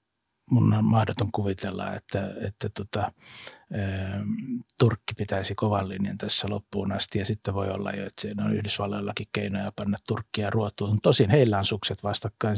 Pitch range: 100-120 Hz